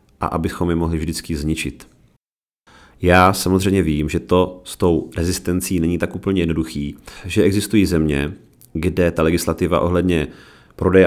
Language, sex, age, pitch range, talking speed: Czech, male, 40-59, 80-90 Hz, 140 wpm